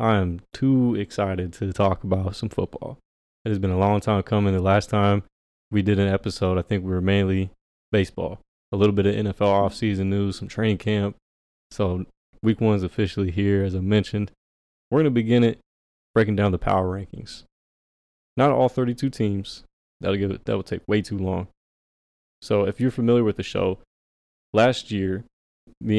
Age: 20-39